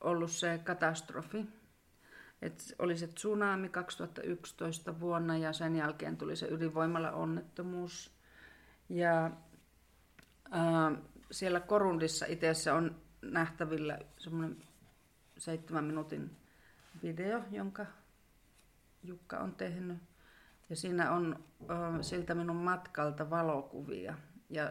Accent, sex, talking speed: native, female, 95 wpm